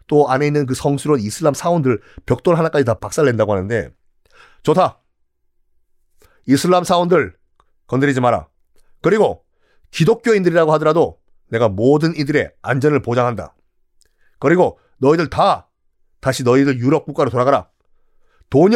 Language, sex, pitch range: Korean, male, 125-165 Hz